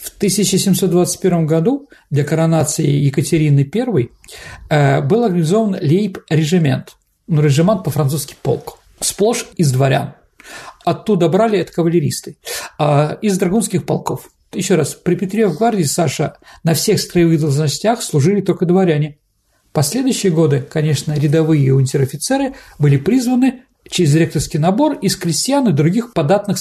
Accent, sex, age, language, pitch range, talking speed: native, male, 50-69, Russian, 145-200 Hz, 120 wpm